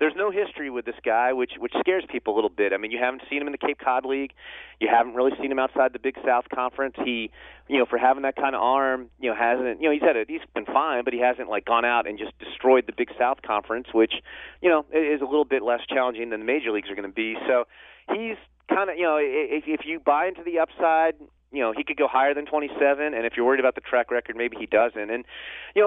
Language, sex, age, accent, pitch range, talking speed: English, male, 30-49, American, 120-145 Hz, 280 wpm